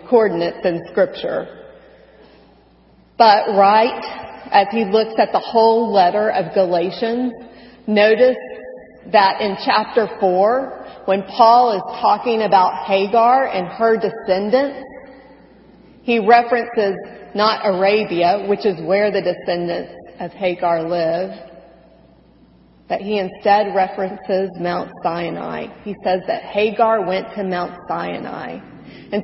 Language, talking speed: English, 115 wpm